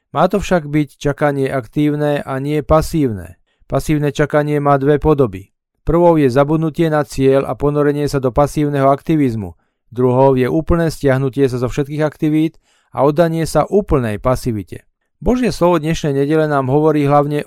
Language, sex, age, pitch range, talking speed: Slovak, male, 40-59, 130-155 Hz, 155 wpm